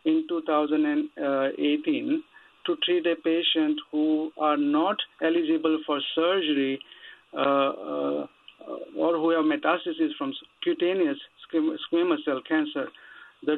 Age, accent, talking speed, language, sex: 50-69, Indian, 95 wpm, English, male